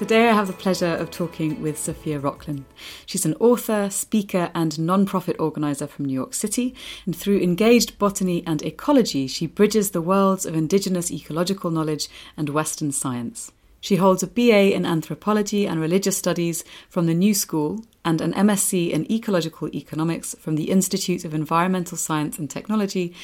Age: 30-49